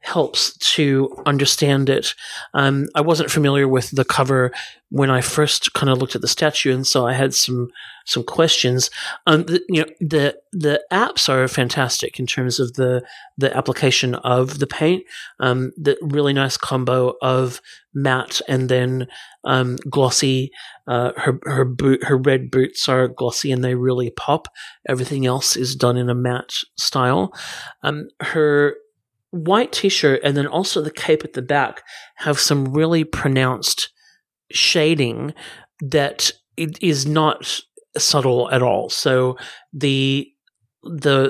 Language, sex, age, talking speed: English, male, 40-59, 150 wpm